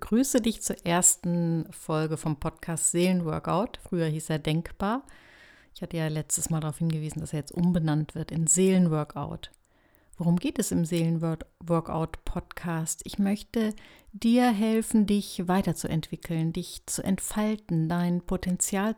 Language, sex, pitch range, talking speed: German, female, 165-210 Hz, 135 wpm